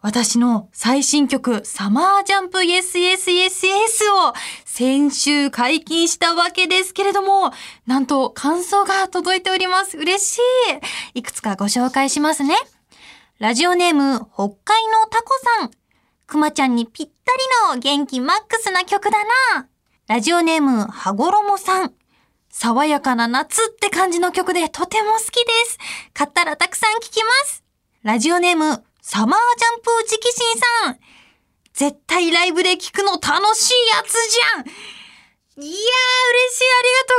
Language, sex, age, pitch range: Japanese, female, 20-39, 245-390 Hz